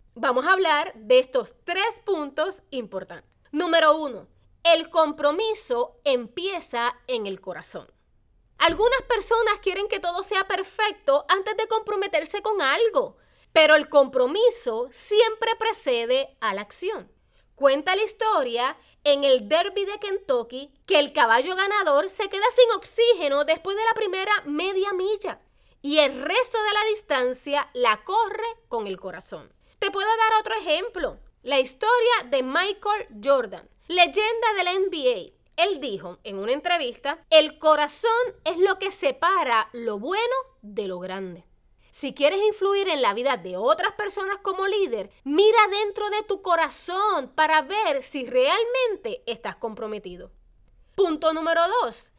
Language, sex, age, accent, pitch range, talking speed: Spanish, female, 30-49, American, 290-435 Hz, 140 wpm